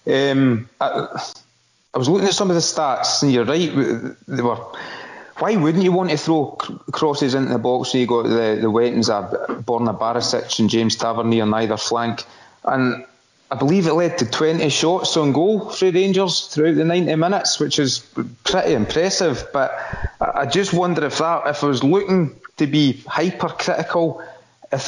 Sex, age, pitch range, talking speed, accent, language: male, 30-49, 120-160 Hz, 180 wpm, British, English